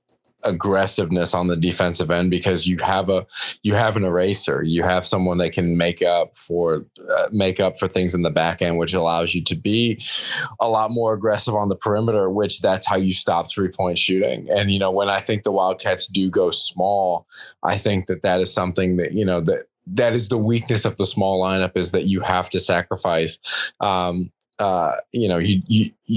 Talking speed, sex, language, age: 205 wpm, male, English, 20-39